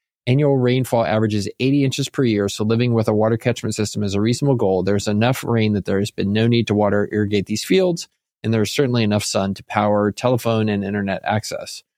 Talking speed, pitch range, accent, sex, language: 230 wpm, 105-125 Hz, American, male, English